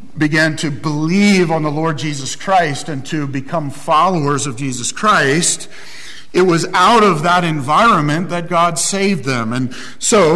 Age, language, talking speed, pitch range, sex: 50-69, English, 155 wpm, 150-195 Hz, male